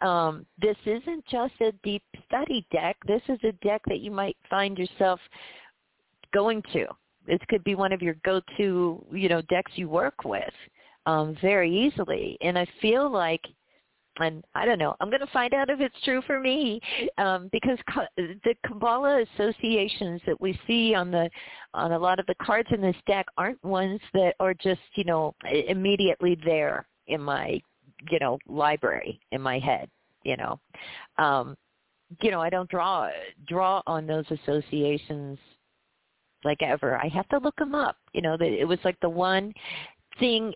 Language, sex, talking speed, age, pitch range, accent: English, female, 175 wpm, 40-59, 170-220 Hz, American